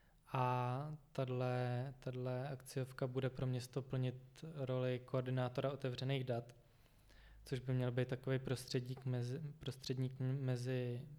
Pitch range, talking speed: 125-135 Hz, 100 wpm